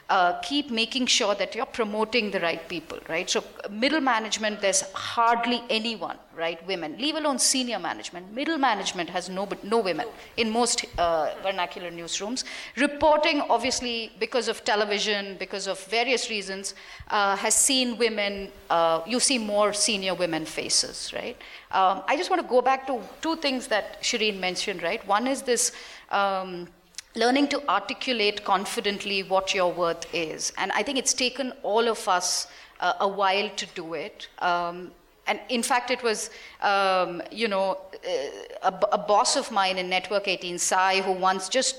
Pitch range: 190-245 Hz